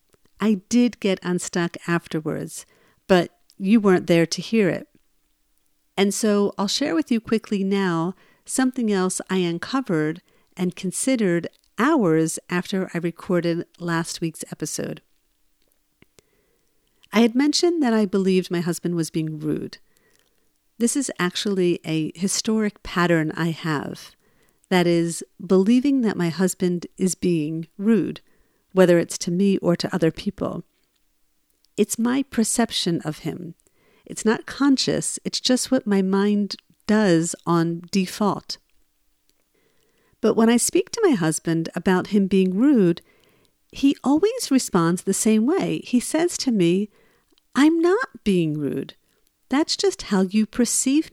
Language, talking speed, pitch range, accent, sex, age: English, 135 wpm, 175-230 Hz, American, female, 50-69